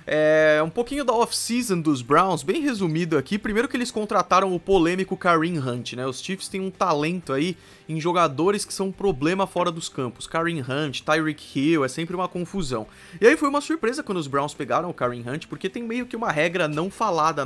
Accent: Brazilian